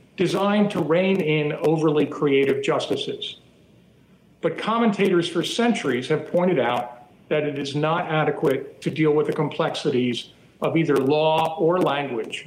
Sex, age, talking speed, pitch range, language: male, 50-69, 140 wpm, 155-205 Hz, English